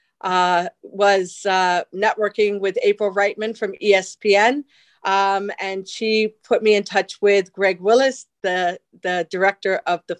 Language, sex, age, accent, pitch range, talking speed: English, female, 40-59, American, 185-220 Hz, 140 wpm